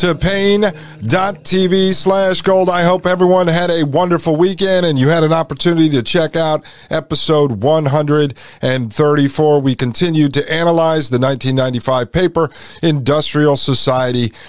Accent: American